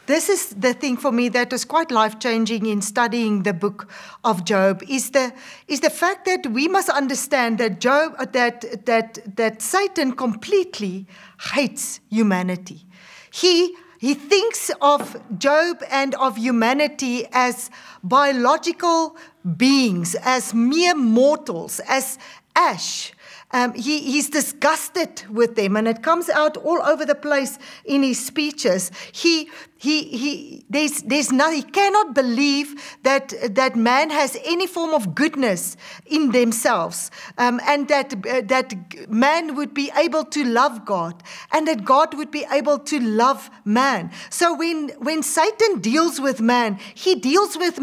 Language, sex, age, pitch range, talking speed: English, female, 40-59, 235-315 Hz, 145 wpm